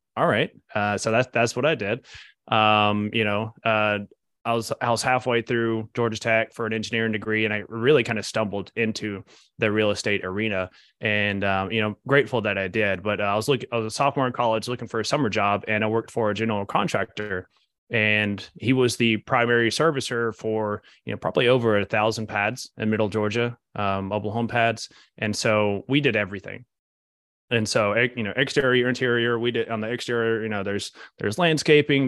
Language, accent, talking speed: English, American, 200 wpm